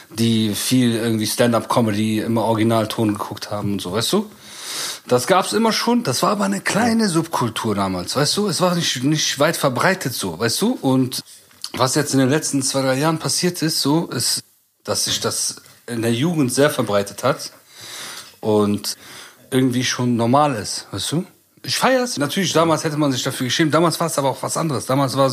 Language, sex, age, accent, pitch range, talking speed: German, male, 40-59, German, 115-150 Hz, 195 wpm